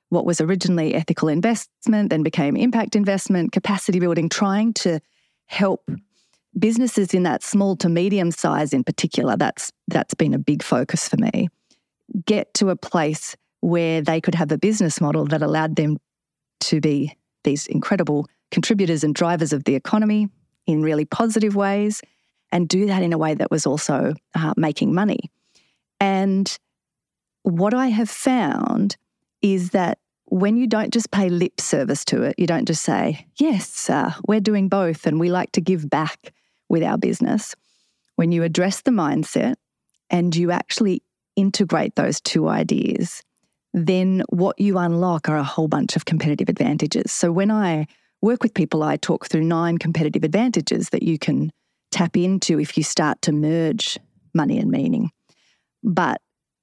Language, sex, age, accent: English, female, 30-49, Australian